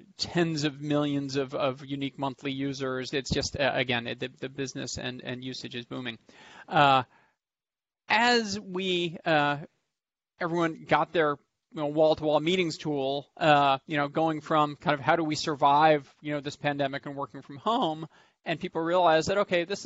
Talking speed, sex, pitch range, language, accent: 175 wpm, male, 145-175 Hz, English, American